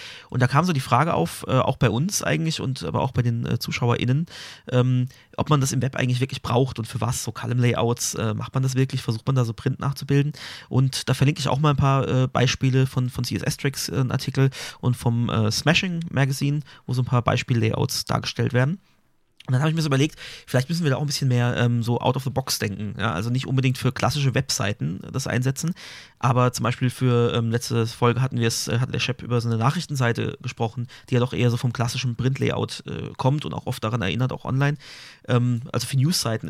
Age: 30-49